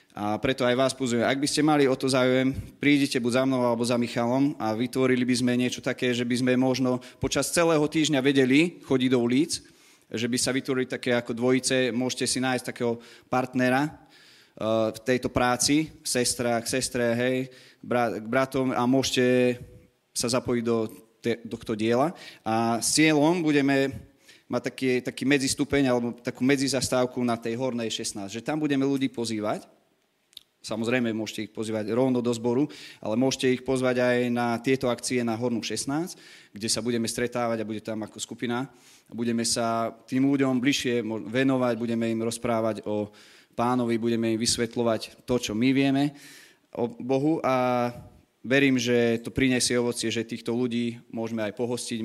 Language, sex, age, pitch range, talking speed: Slovak, male, 20-39, 115-130 Hz, 165 wpm